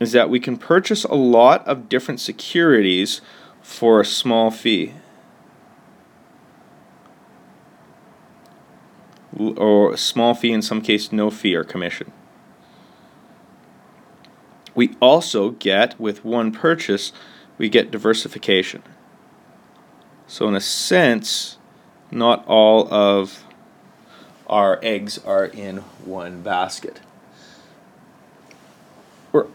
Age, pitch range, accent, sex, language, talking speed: 30-49, 105-130 Hz, American, male, English, 95 wpm